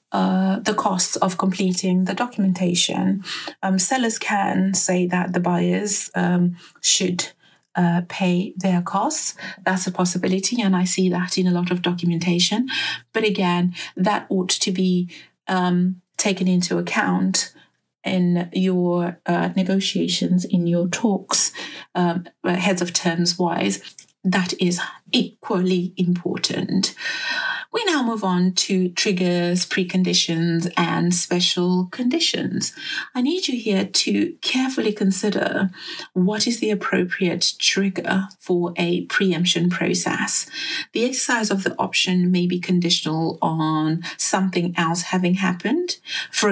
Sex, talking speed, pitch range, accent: female, 125 wpm, 175-205 Hz, British